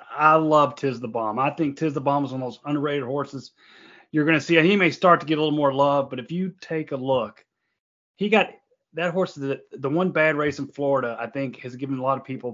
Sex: male